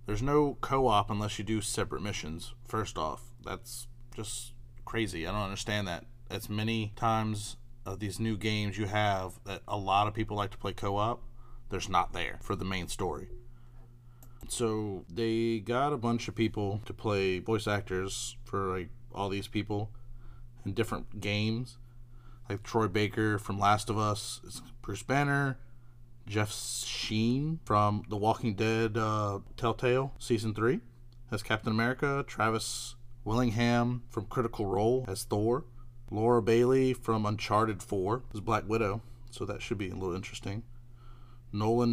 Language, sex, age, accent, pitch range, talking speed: English, male, 30-49, American, 105-120 Hz, 150 wpm